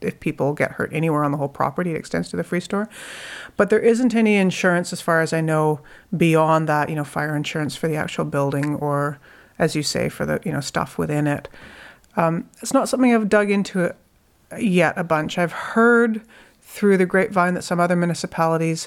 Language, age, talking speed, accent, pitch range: English, 40-59, 205 wpm, American, 160-190 Hz